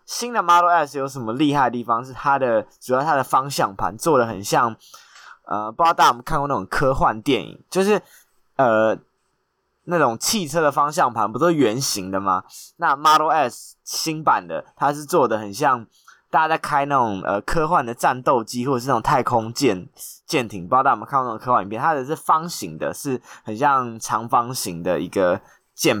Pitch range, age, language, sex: 110-150 Hz, 20-39, Chinese, male